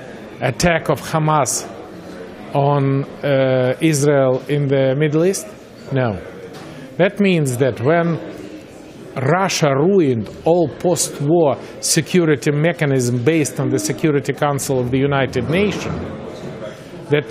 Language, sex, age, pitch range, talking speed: English, male, 50-69, 135-170 Hz, 110 wpm